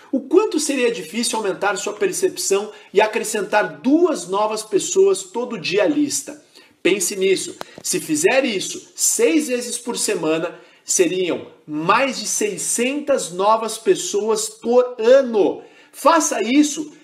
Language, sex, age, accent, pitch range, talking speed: Portuguese, male, 40-59, Brazilian, 210-345 Hz, 125 wpm